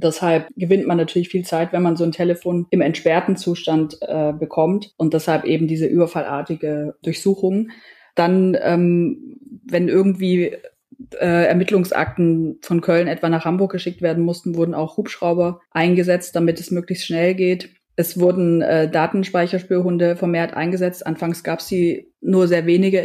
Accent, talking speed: German, 150 wpm